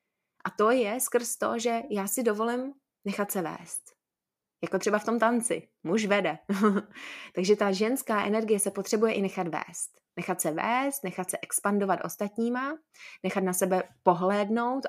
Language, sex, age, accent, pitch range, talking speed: Czech, female, 20-39, native, 190-230 Hz, 155 wpm